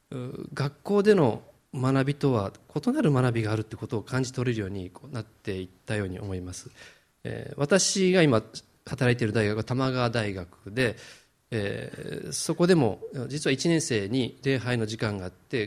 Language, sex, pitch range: Japanese, male, 110-145 Hz